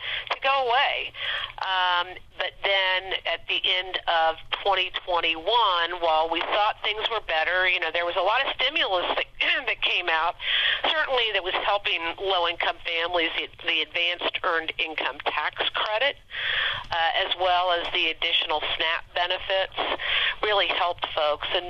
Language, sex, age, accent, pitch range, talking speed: English, female, 50-69, American, 160-190 Hz, 150 wpm